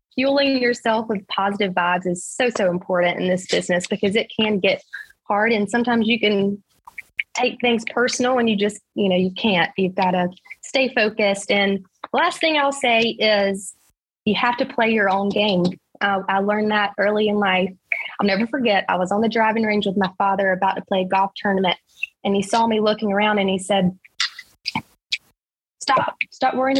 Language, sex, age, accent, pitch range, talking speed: English, female, 20-39, American, 195-235 Hz, 195 wpm